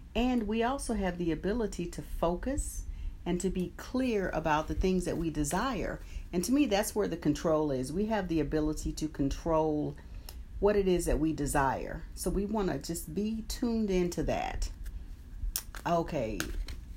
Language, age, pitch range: English, 40-59, 155-215 Hz